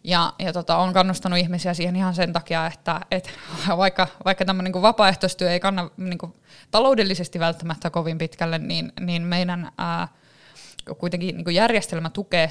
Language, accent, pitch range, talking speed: Finnish, native, 165-185 Hz, 155 wpm